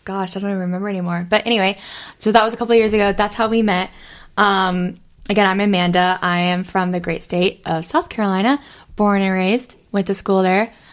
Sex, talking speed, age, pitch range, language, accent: female, 215 wpm, 10-29, 180-220 Hz, English, American